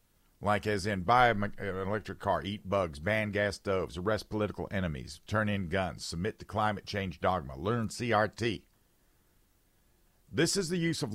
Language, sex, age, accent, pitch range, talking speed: English, male, 50-69, American, 90-120 Hz, 160 wpm